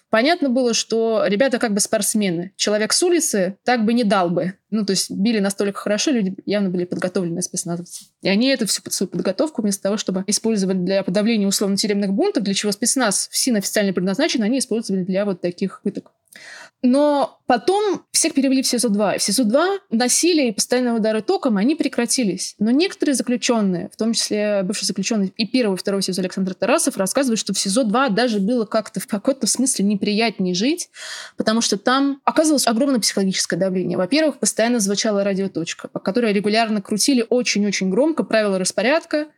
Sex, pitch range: female, 195-245 Hz